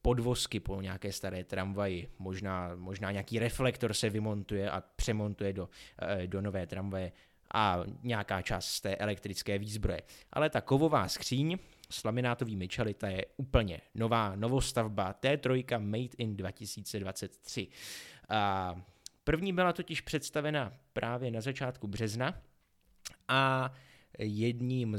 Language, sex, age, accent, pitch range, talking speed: Czech, male, 20-39, native, 100-130 Hz, 120 wpm